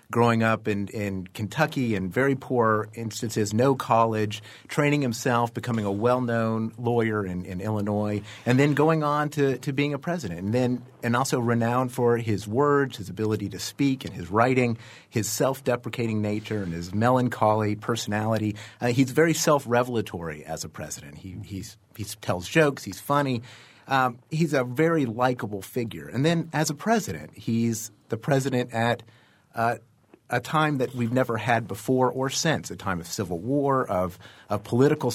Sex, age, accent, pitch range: male, 30-49, American, 105-135 Hz